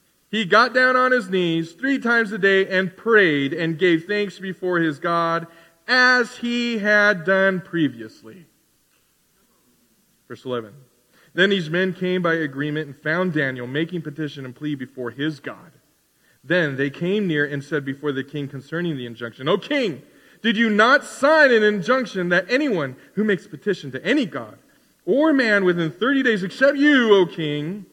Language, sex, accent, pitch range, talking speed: English, male, American, 140-200 Hz, 170 wpm